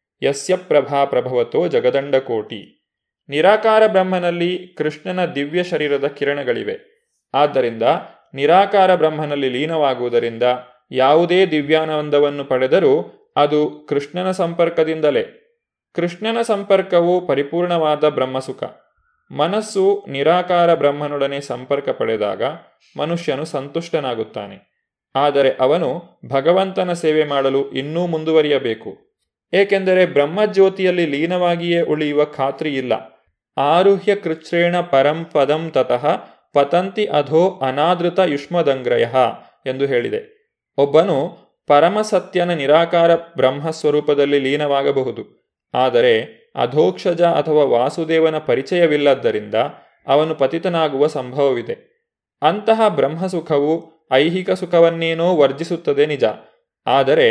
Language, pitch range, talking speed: Kannada, 145-185 Hz, 80 wpm